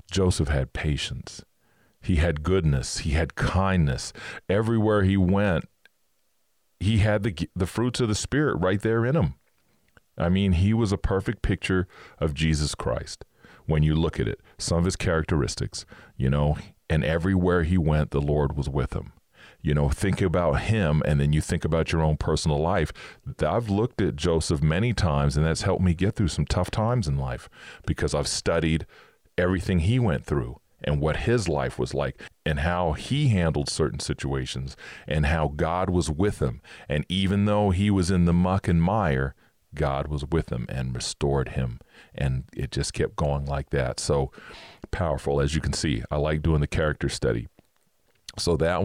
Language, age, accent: English, 40-59, American